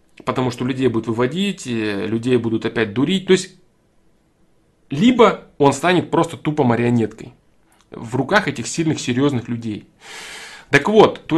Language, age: Russian, 20-39